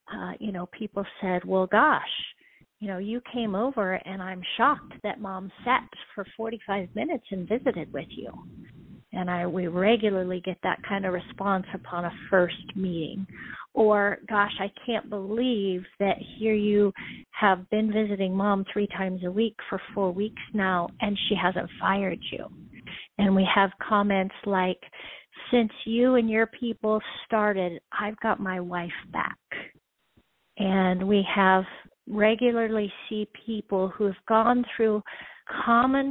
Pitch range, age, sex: 185-220 Hz, 40-59, female